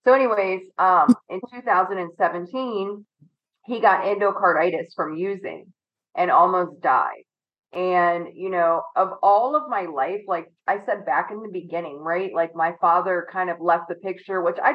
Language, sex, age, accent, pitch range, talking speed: English, female, 30-49, American, 175-205 Hz, 160 wpm